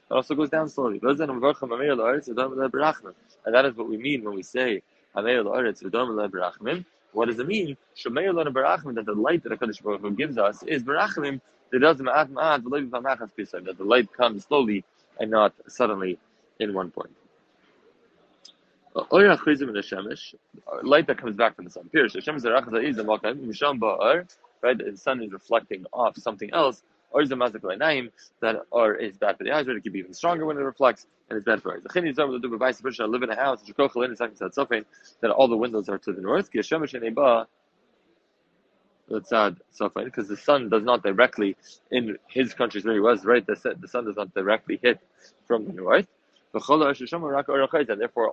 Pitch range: 110-140 Hz